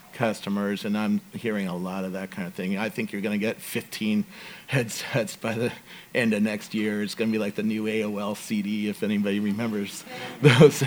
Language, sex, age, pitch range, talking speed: English, male, 40-59, 105-140 Hz, 210 wpm